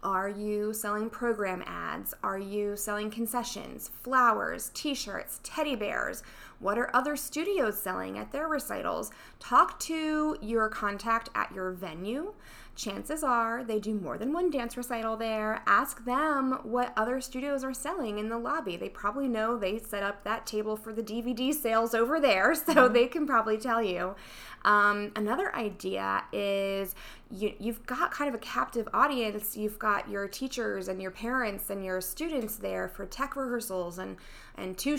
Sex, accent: female, American